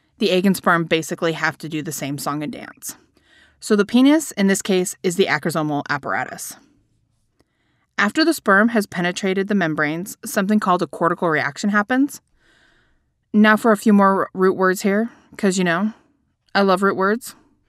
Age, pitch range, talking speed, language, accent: 20-39, 160-210 Hz, 175 wpm, English, American